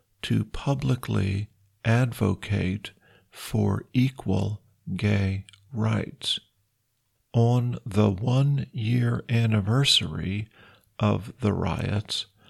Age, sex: 50-69, male